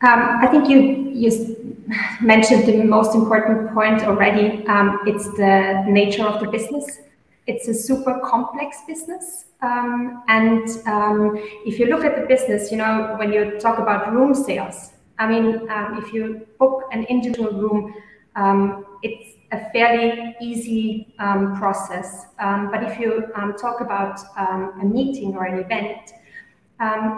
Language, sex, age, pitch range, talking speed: English, female, 30-49, 195-230 Hz, 155 wpm